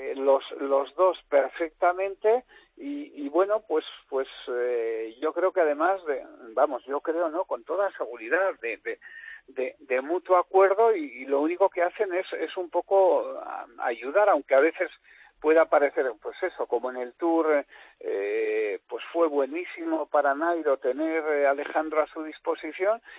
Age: 50-69